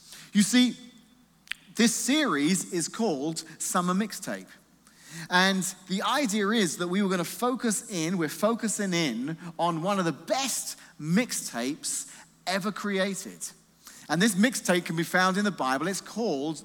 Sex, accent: male, British